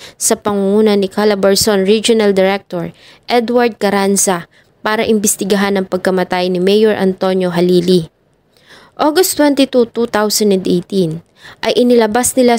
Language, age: English, 20-39